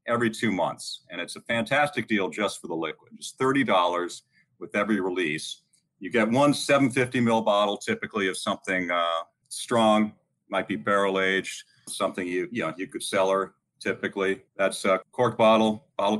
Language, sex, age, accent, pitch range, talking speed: English, male, 40-59, American, 95-115 Hz, 170 wpm